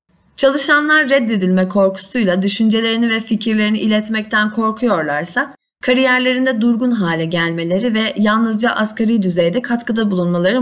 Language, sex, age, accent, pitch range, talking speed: Turkish, female, 30-49, native, 185-250 Hz, 100 wpm